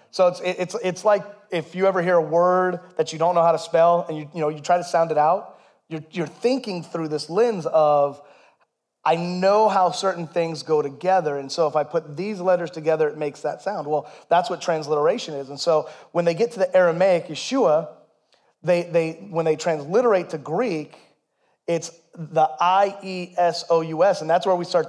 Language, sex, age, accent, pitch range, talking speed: English, male, 30-49, American, 155-180 Hz, 200 wpm